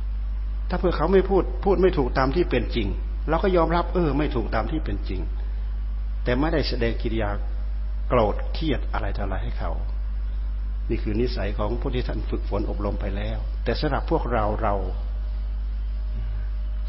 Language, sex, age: Thai, male, 60-79